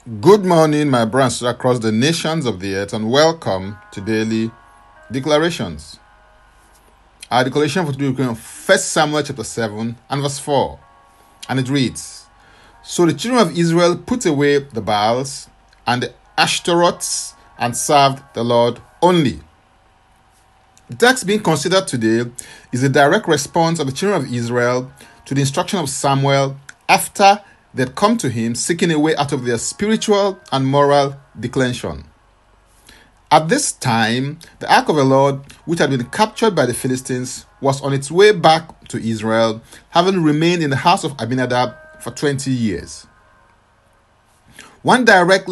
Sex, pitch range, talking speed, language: male, 115-165 Hz, 155 wpm, English